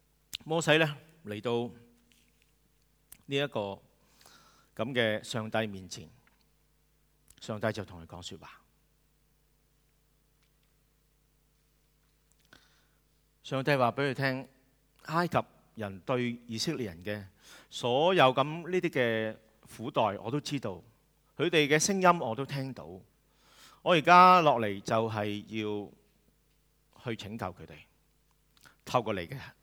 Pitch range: 105-150 Hz